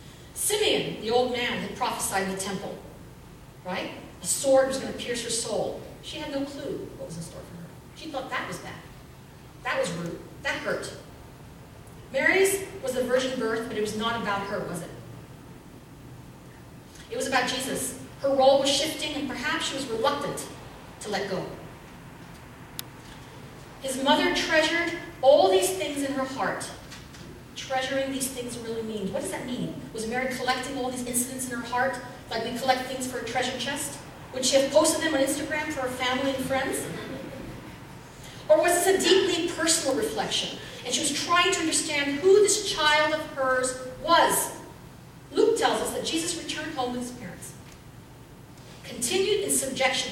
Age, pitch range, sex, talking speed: 40-59, 235-305 Hz, female, 175 wpm